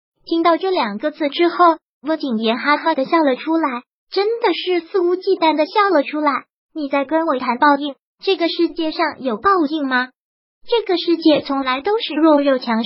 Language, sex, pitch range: Chinese, male, 265-335 Hz